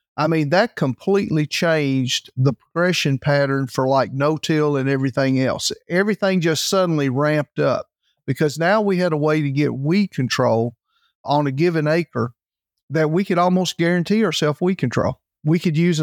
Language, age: English, 50-69